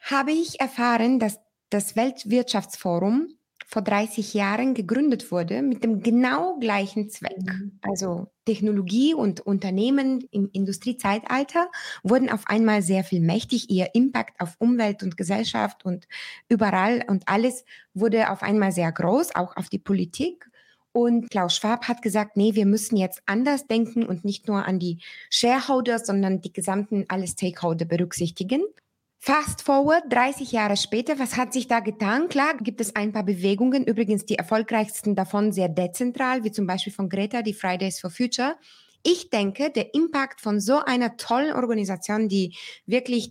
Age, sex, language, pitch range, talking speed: 20-39, female, German, 195-250 Hz, 155 wpm